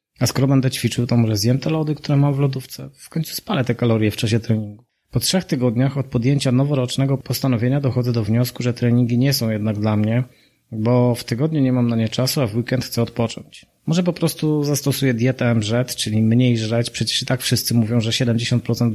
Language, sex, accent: Polish, male, native